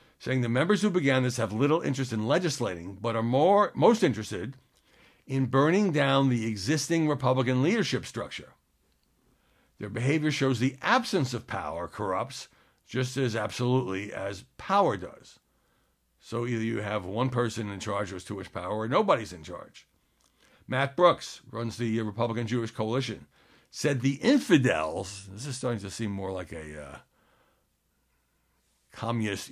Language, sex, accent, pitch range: English, male, American, 100-135 Hz